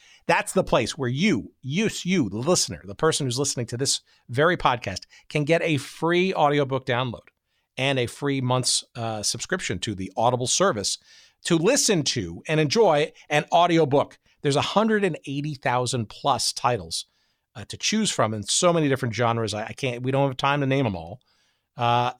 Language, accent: English, American